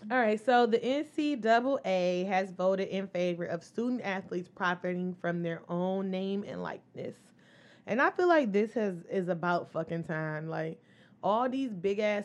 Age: 20-39